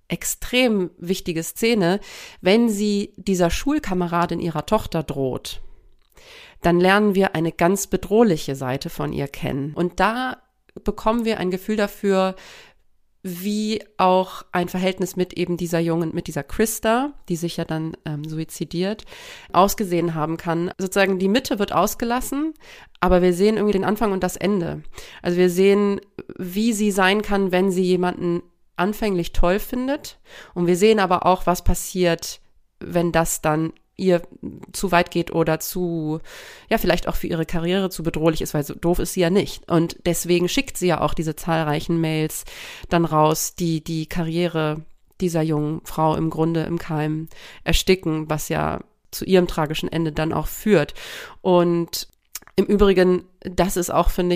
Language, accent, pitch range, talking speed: German, German, 165-200 Hz, 160 wpm